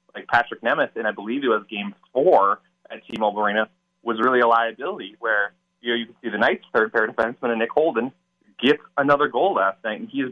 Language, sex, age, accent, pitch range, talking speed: English, male, 20-39, American, 110-130 Hz, 220 wpm